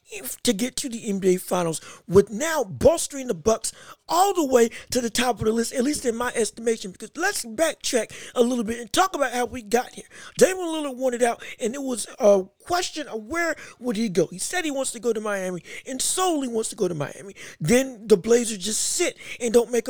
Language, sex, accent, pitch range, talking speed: English, male, American, 230-290 Hz, 225 wpm